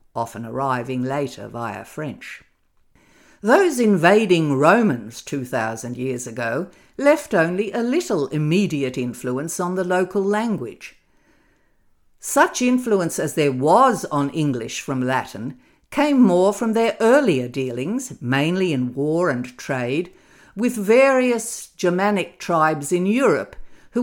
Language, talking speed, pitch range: English, 120 wpm, 125-210 Hz